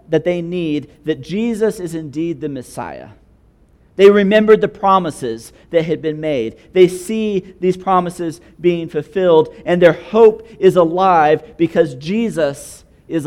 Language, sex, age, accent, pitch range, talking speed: English, male, 40-59, American, 165-215 Hz, 140 wpm